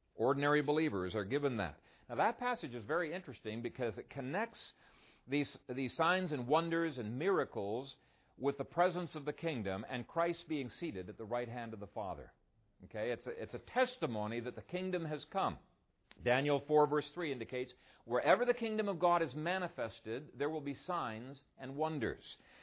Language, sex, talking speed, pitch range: English, male, 175 wpm, 125-180 Hz